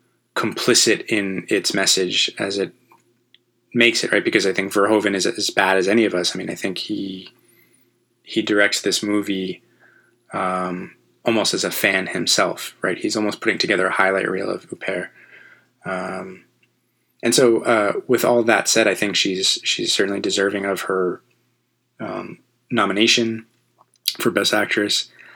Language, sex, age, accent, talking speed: English, male, 20-39, American, 155 wpm